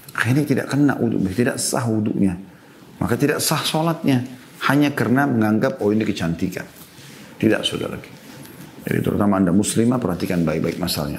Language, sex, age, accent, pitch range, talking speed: Indonesian, male, 40-59, native, 95-125 Hz, 145 wpm